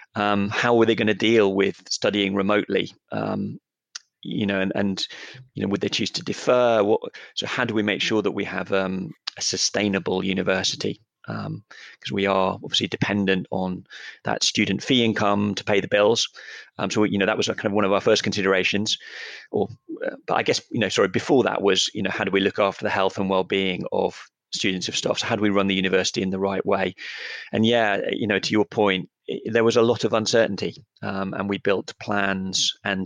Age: 30-49